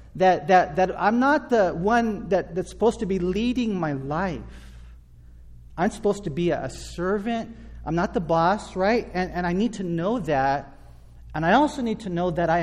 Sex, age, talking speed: male, 40-59, 195 wpm